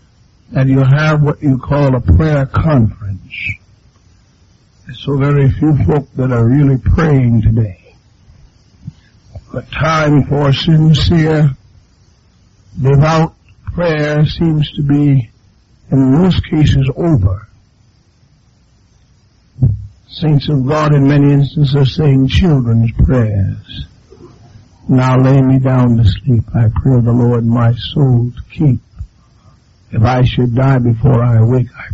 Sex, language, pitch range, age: male, English, 105-140 Hz, 60-79